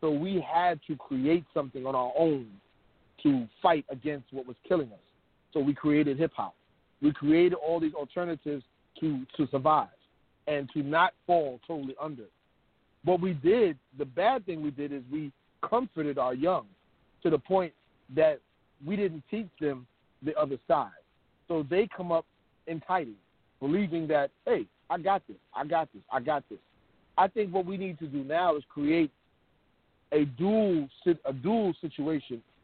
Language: English